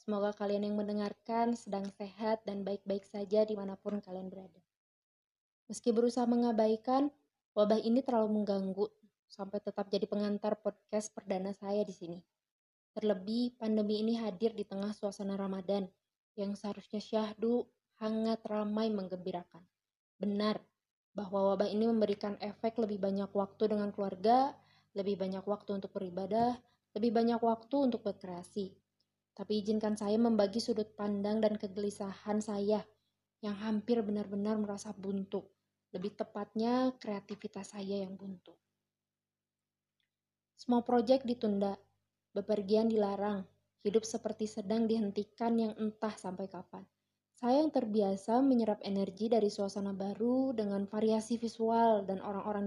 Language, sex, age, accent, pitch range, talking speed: Indonesian, female, 20-39, native, 200-220 Hz, 125 wpm